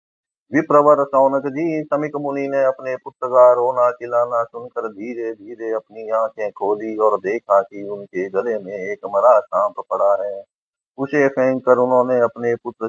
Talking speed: 130 wpm